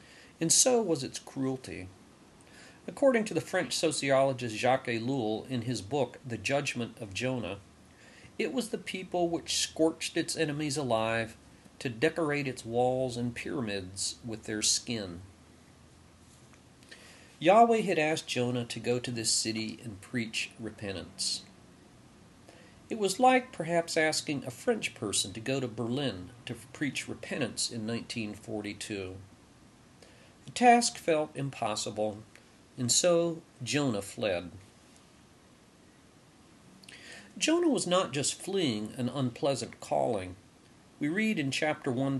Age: 40-59